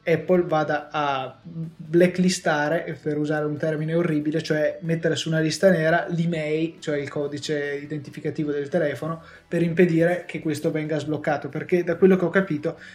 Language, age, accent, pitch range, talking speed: Italian, 20-39, native, 150-170 Hz, 160 wpm